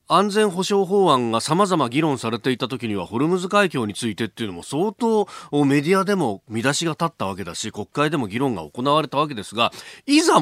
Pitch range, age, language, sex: 105-165 Hz, 40-59, Japanese, male